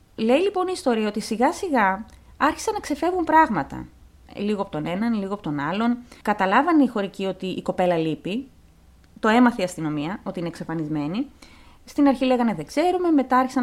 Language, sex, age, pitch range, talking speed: Greek, female, 30-49, 185-280 Hz, 175 wpm